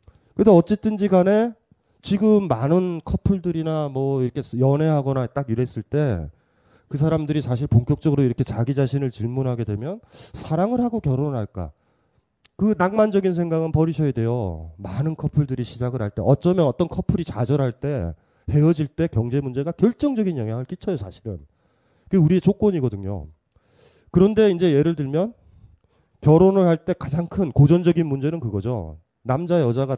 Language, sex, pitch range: Korean, male, 120-185 Hz